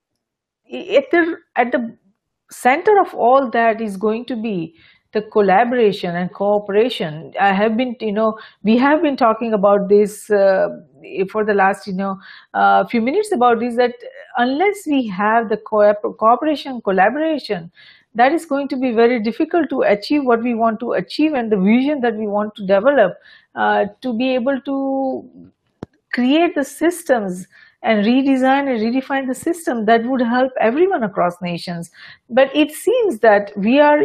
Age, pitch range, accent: 50-69, 210-275 Hz, Indian